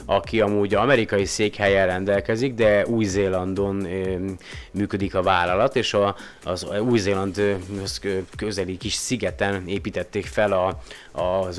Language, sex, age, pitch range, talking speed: Hungarian, male, 30-49, 95-105 Hz, 110 wpm